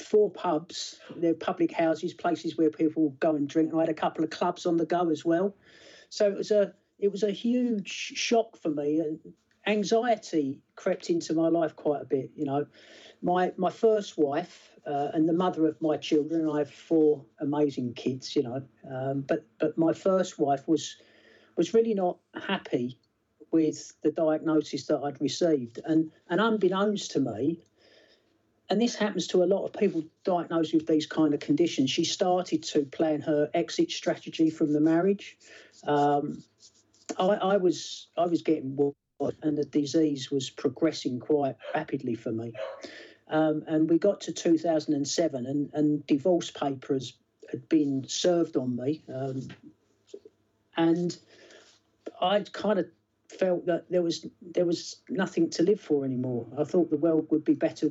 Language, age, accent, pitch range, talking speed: English, 40-59, British, 145-180 Hz, 175 wpm